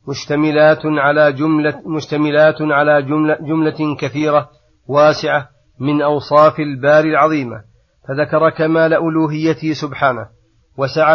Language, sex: Arabic, male